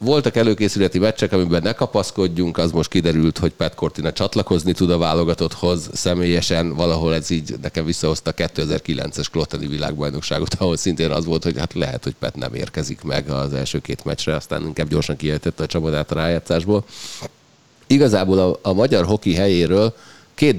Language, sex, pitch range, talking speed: Hungarian, male, 80-95 Hz, 165 wpm